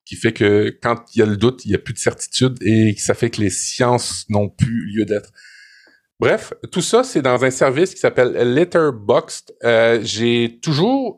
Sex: male